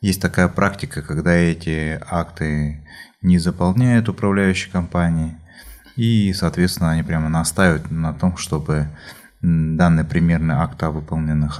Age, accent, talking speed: 20-39, native, 120 wpm